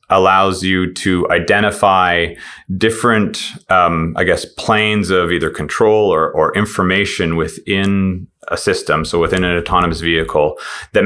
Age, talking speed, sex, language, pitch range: 30-49, 130 wpm, male, English, 85-110 Hz